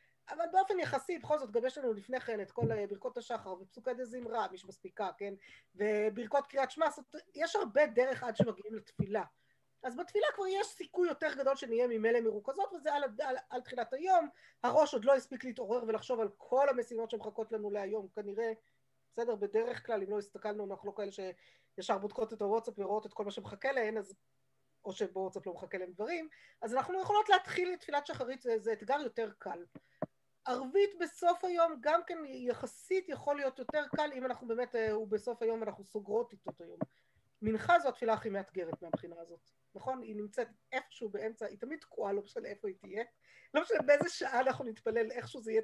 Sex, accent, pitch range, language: female, native, 215-305 Hz, Hebrew